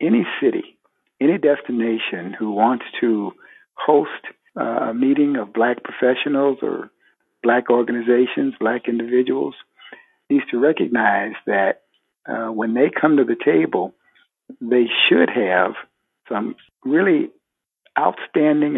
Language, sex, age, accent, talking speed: English, male, 60-79, American, 110 wpm